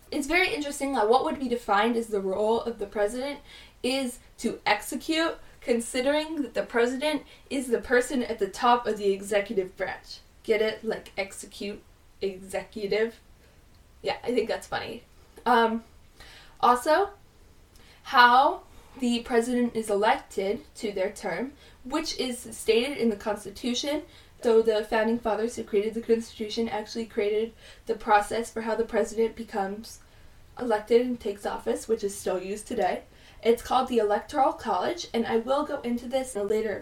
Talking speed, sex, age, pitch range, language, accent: 160 wpm, female, 10-29, 215-255 Hz, English, American